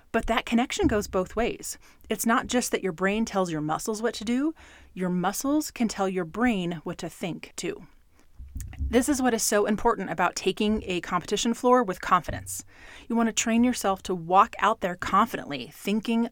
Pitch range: 175-225 Hz